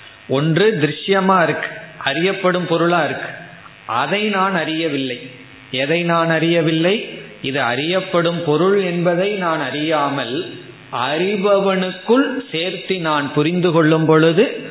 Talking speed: 100 wpm